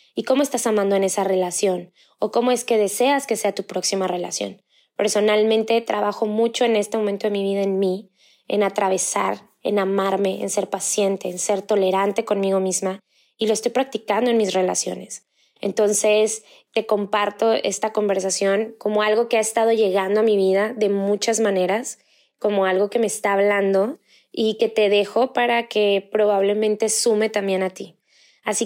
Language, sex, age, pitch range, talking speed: Spanish, female, 20-39, 195-230 Hz, 170 wpm